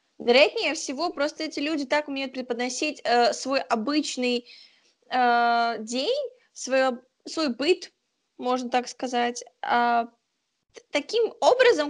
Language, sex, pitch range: Russian, female, 240-300 Hz